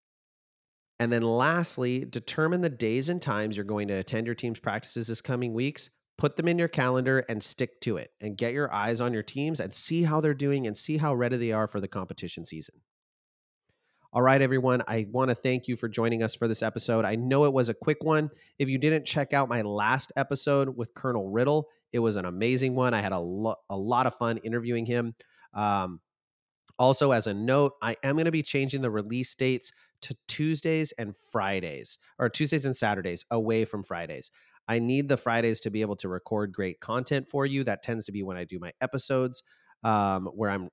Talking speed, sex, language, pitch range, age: 215 wpm, male, English, 110-140 Hz, 30-49